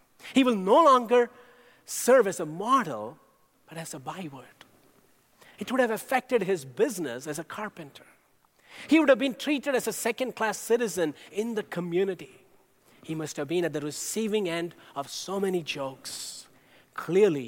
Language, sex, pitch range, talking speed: English, male, 135-190 Hz, 160 wpm